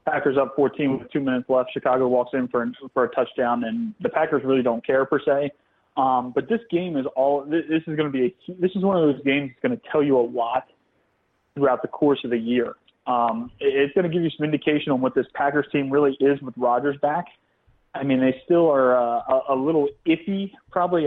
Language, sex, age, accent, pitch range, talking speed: English, male, 30-49, American, 130-155 Hz, 240 wpm